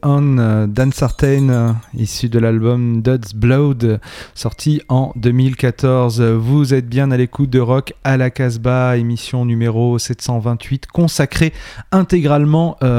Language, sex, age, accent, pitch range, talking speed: French, male, 30-49, French, 120-155 Hz, 115 wpm